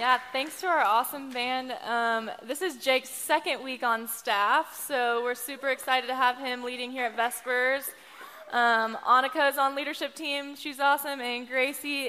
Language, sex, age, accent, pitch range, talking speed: English, female, 10-29, American, 245-295 Hz, 175 wpm